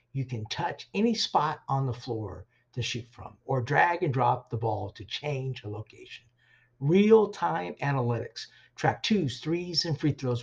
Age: 50-69